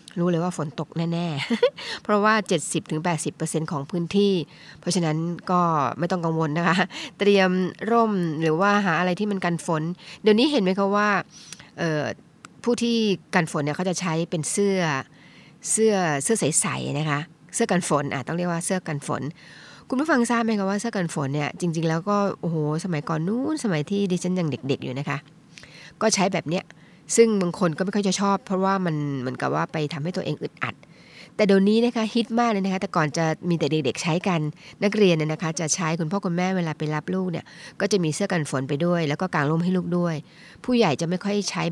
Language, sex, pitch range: Thai, female, 160-195 Hz